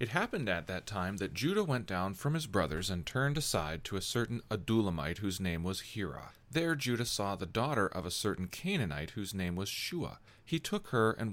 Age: 40-59